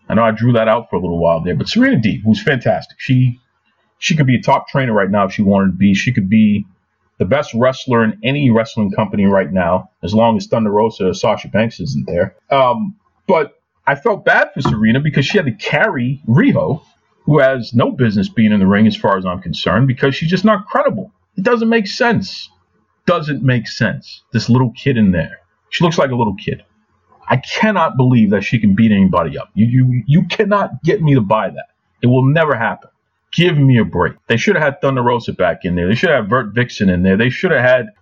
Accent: American